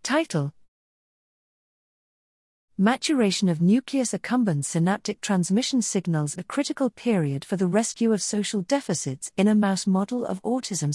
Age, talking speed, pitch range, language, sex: 40-59, 125 wpm, 160-215 Hz, English, female